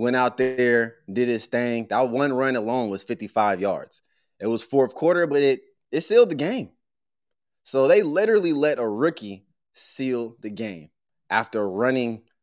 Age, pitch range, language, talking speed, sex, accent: 20-39, 105-165 Hz, English, 165 wpm, male, American